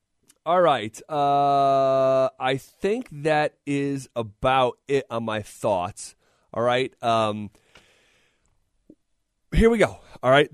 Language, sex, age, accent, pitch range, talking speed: English, male, 30-49, American, 110-135 Hz, 115 wpm